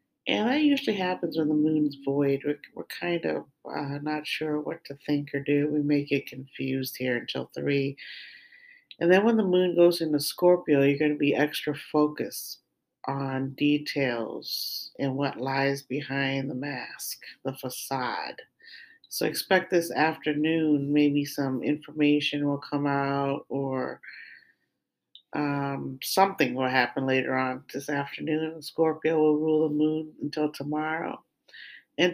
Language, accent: English, American